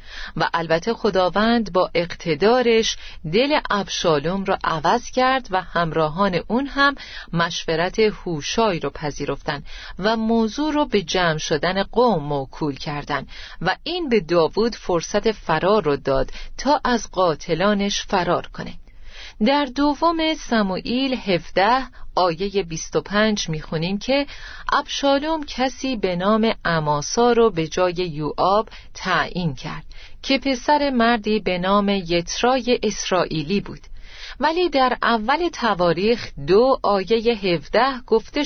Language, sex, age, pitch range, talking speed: Persian, female, 40-59, 175-260 Hz, 120 wpm